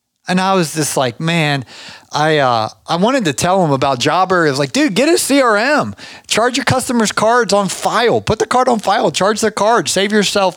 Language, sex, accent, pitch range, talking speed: English, male, American, 135-180 Hz, 210 wpm